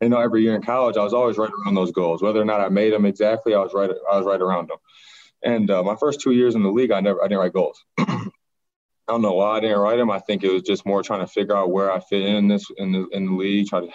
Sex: male